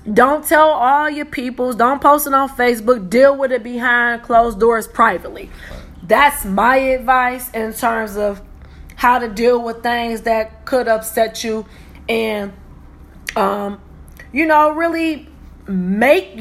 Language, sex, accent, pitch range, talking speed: English, female, American, 205-265 Hz, 140 wpm